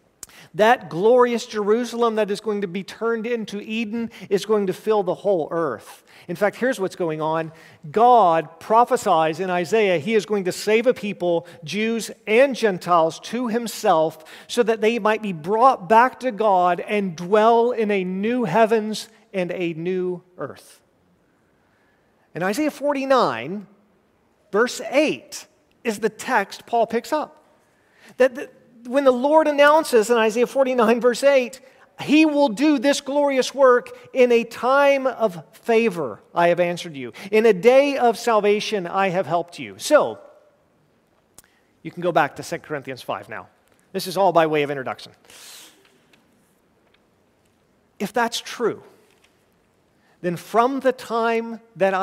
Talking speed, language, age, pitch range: 150 wpm, English, 40-59, 180-235 Hz